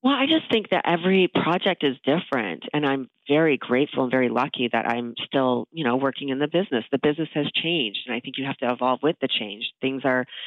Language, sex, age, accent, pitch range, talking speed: English, female, 30-49, American, 120-140 Hz, 235 wpm